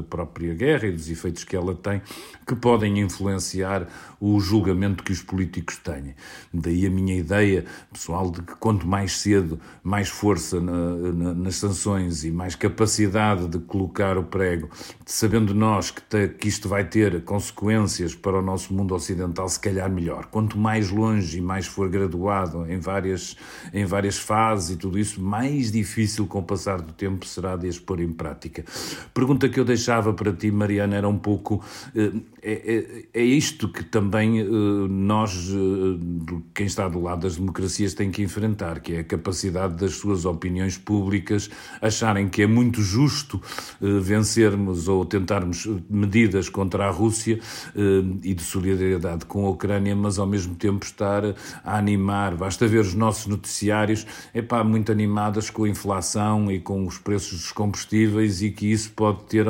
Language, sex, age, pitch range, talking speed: Portuguese, male, 50-69, 95-105 Hz, 165 wpm